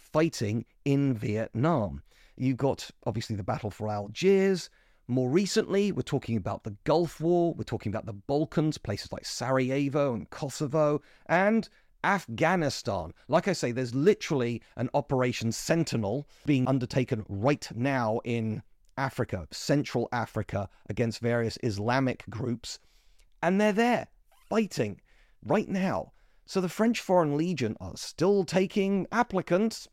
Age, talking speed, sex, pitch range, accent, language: 30-49, 130 wpm, male, 115-170 Hz, British, English